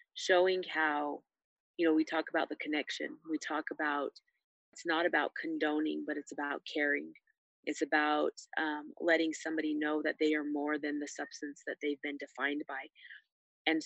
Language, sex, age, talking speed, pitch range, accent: English, female, 30-49, 170 wpm, 155-205 Hz, American